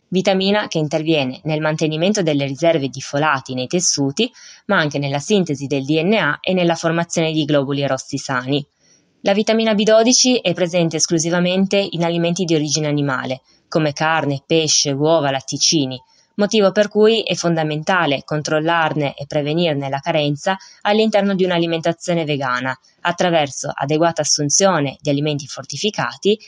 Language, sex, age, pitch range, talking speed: Italian, female, 20-39, 140-175 Hz, 135 wpm